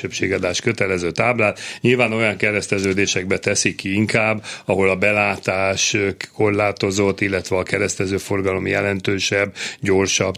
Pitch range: 100-125 Hz